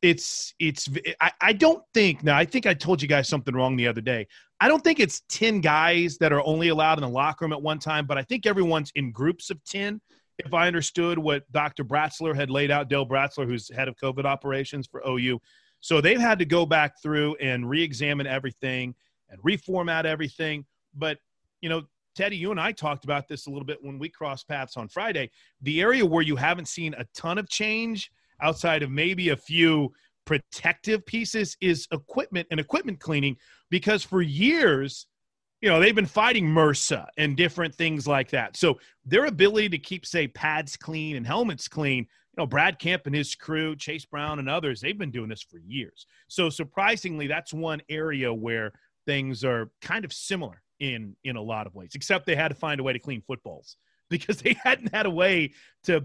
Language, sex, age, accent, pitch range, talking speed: English, male, 30-49, American, 140-175 Hz, 210 wpm